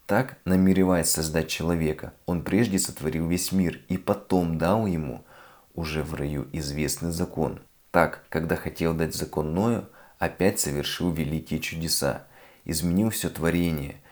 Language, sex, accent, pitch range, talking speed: Russian, male, native, 80-90 Hz, 130 wpm